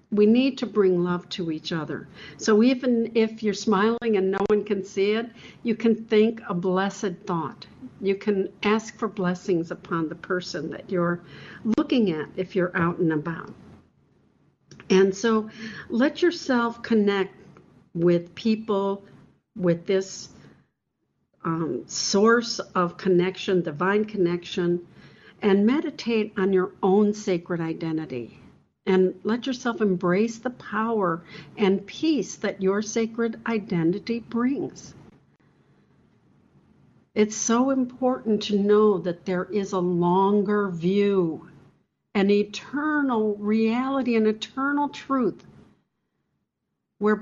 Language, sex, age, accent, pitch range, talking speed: English, female, 60-79, American, 180-225 Hz, 120 wpm